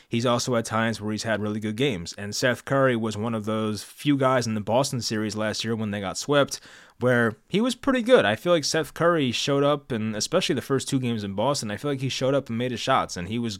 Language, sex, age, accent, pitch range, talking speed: English, male, 20-39, American, 105-130 Hz, 275 wpm